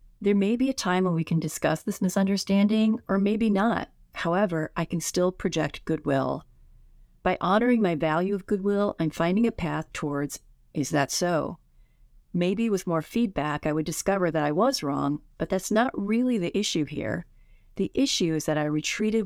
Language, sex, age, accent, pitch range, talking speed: English, female, 40-59, American, 150-195 Hz, 180 wpm